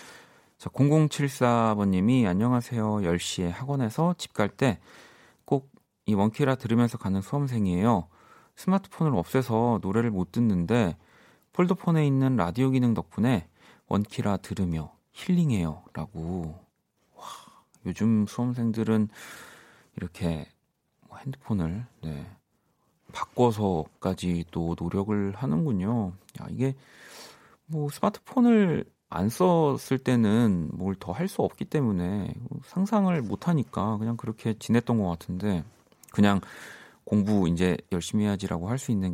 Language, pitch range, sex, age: Korean, 95-130 Hz, male, 40-59